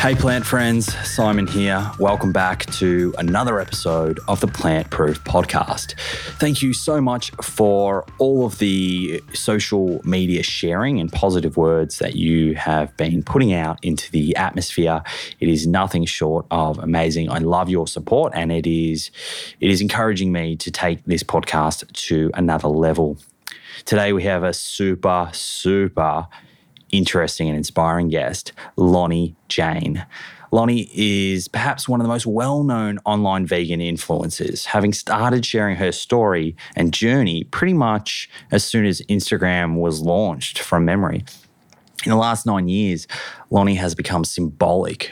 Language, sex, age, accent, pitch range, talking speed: English, male, 20-39, Australian, 85-105 Hz, 150 wpm